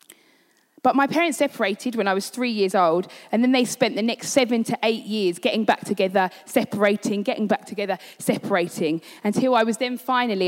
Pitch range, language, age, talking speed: 195-245 Hz, English, 20-39, 190 wpm